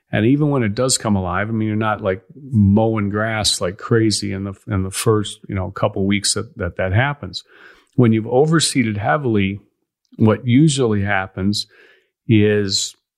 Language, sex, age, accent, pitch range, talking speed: English, male, 40-59, American, 100-120 Hz, 170 wpm